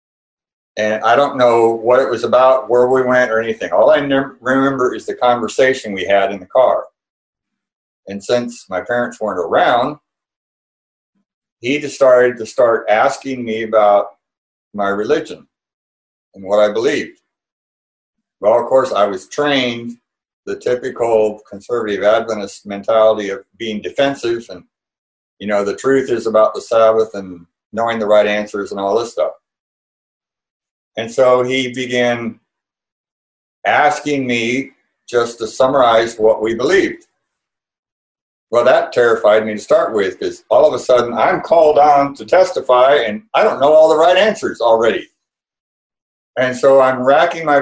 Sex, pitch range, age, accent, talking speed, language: male, 110-140 Hz, 60-79, American, 150 wpm, English